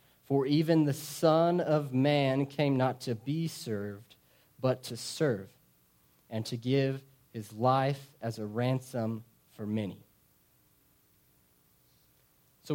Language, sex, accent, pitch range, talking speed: English, male, American, 125-155 Hz, 120 wpm